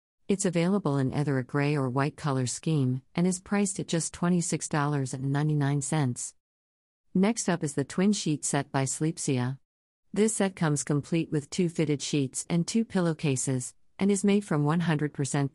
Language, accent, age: English, American, 50-69